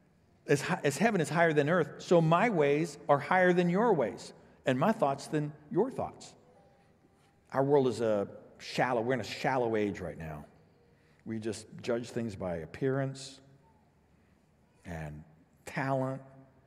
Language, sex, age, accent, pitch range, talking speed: English, male, 60-79, American, 130-205 Hz, 145 wpm